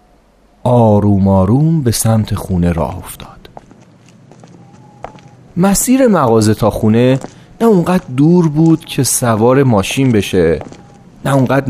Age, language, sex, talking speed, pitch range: 30-49, Persian, male, 110 wpm, 105-160 Hz